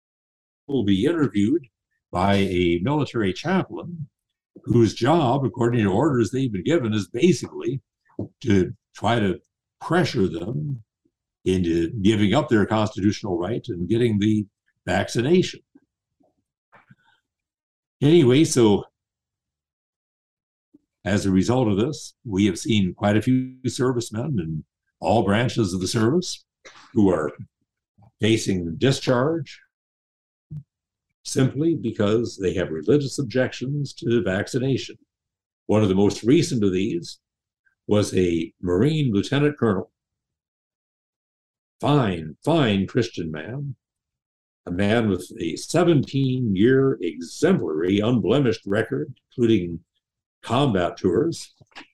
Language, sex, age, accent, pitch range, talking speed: English, male, 60-79, American, 100-135 Hz, 110 wpm